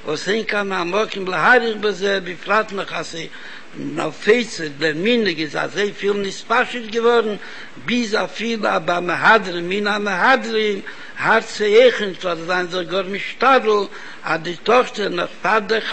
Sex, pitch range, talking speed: male, 185-225 Hz, 125 wpm